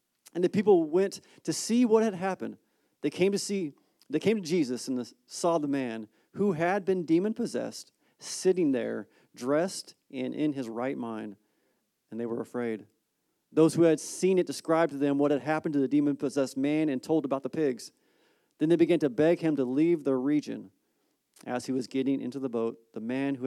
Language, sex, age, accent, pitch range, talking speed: English, male, 40-59, American, 115-150 Hz, 195 wpm